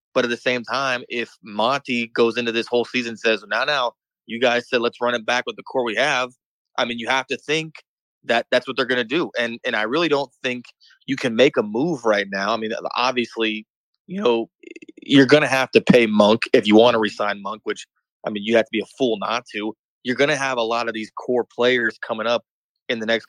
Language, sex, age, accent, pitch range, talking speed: English, male, 20-39, American, 115-135 Hz, 255 wpm